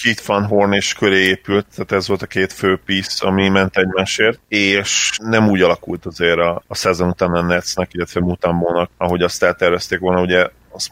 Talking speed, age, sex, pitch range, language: 185 wpm, 30-49, male, 90-100 Hz, Hungarian